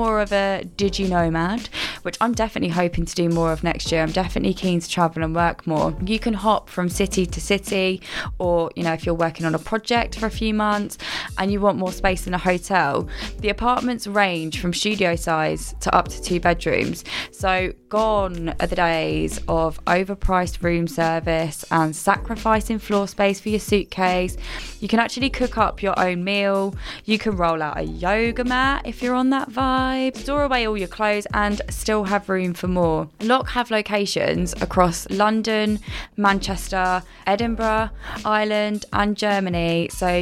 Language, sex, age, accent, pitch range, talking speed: English, female, 20-39, British, 170-210 Hz, 180 wpm